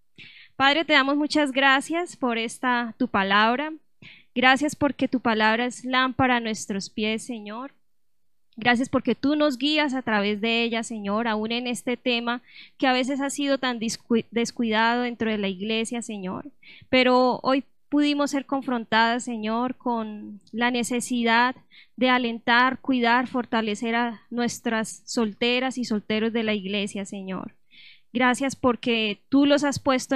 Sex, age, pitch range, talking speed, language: female, 10-29, 225-260 Hz, 145 wpm, Spanish